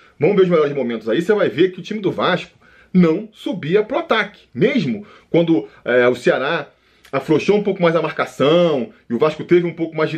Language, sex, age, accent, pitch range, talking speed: Portuguese, male, 20-39, Brazilian, 160-220 Hz, 220 wpm